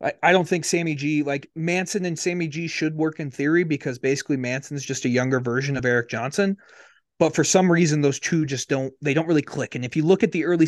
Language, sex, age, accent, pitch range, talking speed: English, male, 30-49, American, 125-160 Hz, 240 wpm